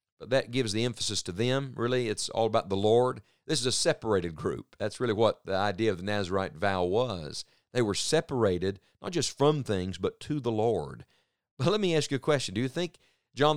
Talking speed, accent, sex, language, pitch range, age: 215 wpm, American, male, English, 105-140 Hz, 50-69